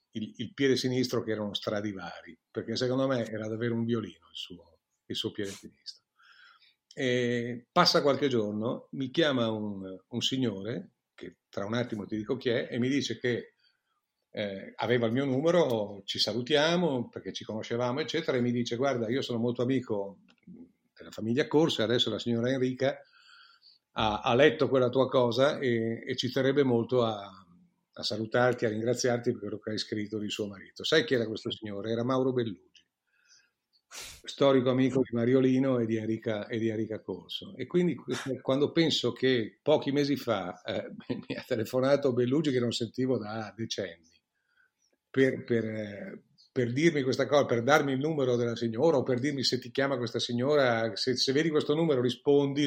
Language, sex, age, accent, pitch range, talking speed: Italian, male, 50-69, native, 115-135 Hz, 180 wpm